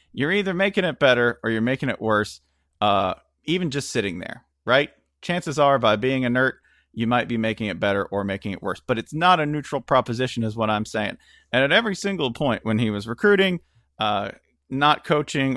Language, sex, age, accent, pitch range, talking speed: English, male, 40-59, American, 100-145 Hz, 205 wpm